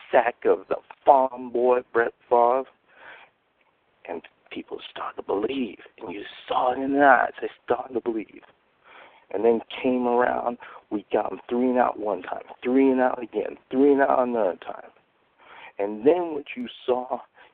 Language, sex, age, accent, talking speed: English, male, 50-69, American, 170 wpm